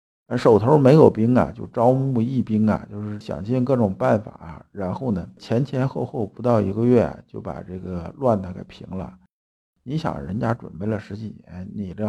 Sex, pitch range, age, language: male, 95-120 Hz, 50-69, Chinese